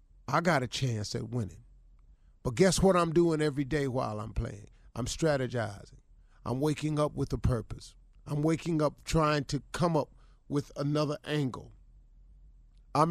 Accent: American